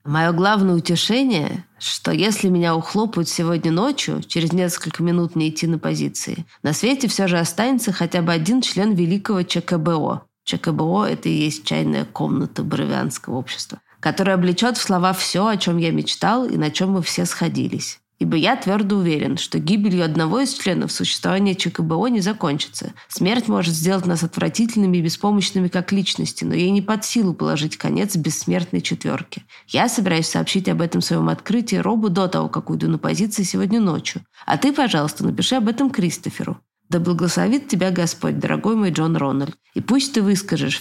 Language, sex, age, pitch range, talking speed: Russian, female, 20-39, 160-205 Hz, 170 wpm